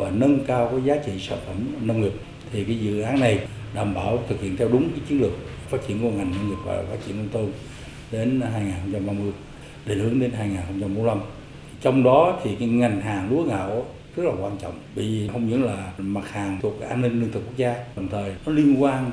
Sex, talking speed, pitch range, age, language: male, 225 wpm, 100-130 Hz, 60-79, Vietnamese